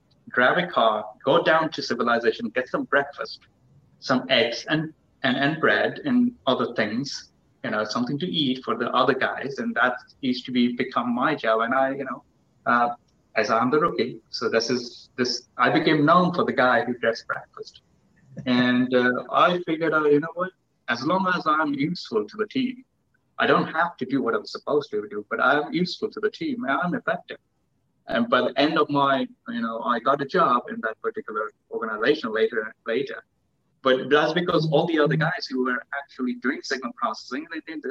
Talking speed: 200 wpm